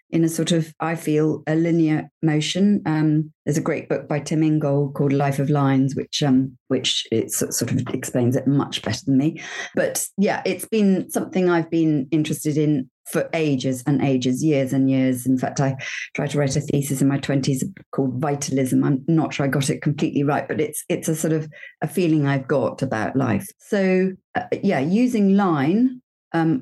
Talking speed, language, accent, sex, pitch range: 200 wpm, English, British, female, 140-165 Hz